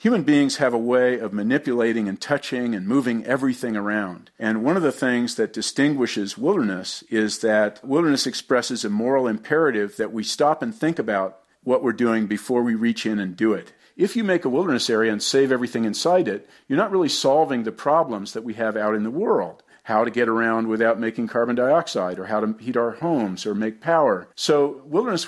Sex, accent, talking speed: male, American, 205 wpm